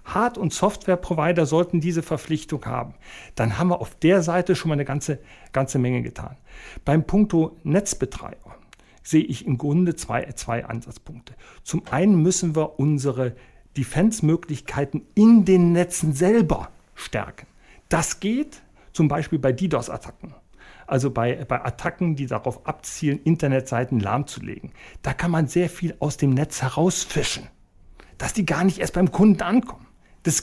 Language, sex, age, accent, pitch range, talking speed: German, male, 40-59, German, 140-185 Hz, 145 wpm